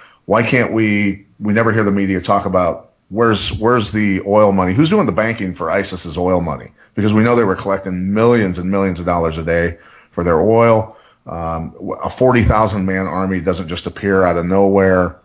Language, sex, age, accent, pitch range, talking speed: English, male, 40-59, American, 95-115 Hz, 195 wpm